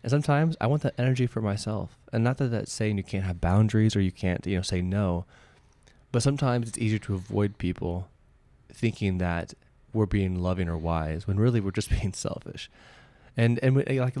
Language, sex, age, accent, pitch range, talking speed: English, male, 20-39, American, 100-125 Hz, 210 wpm